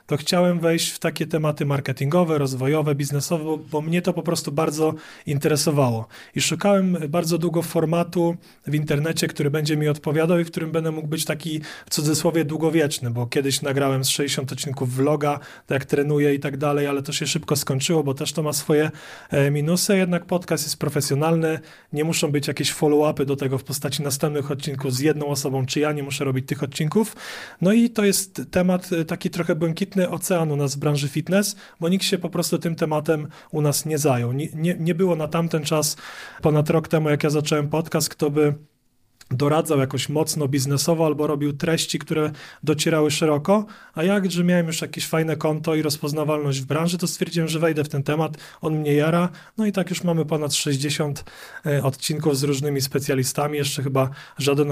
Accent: native